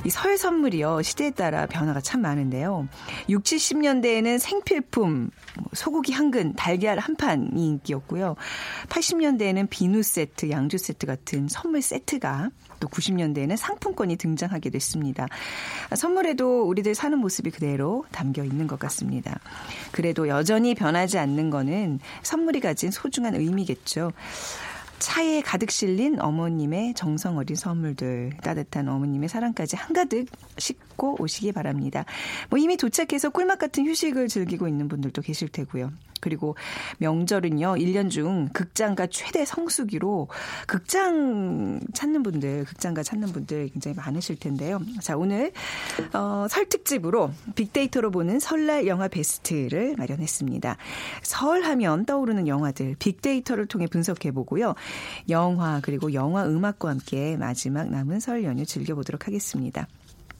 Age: 40-59